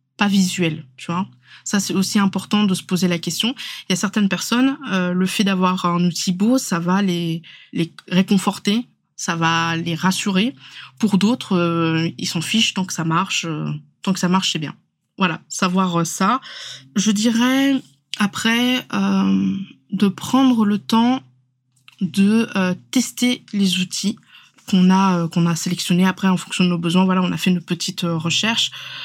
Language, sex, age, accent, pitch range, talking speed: French, female, 20-39, French, 170-205 Hz, 180 wpm